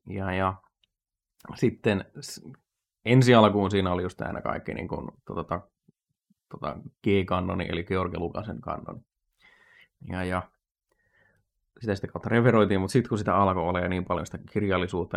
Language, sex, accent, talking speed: Finnish, male, native, 135 wpm